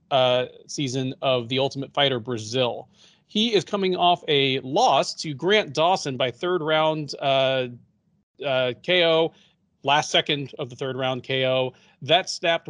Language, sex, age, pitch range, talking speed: English, male, 30-49, 140-190 Hz, 145 wpm